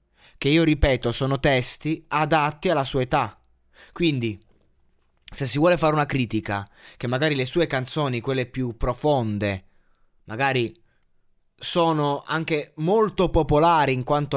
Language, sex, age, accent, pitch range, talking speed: Italian, male, 20-39, native, 105-150 Hz, 130 wpm